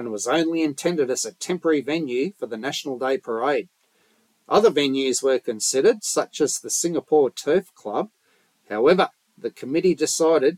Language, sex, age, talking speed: English, male, 40-59, 145 wpm